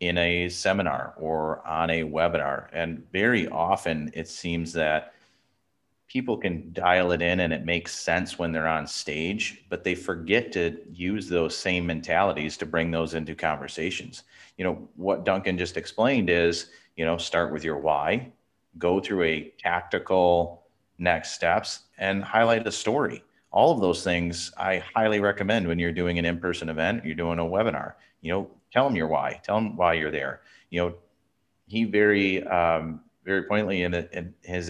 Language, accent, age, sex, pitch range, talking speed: English, American, 30-49, male, 85-100 Hz, 175 wpm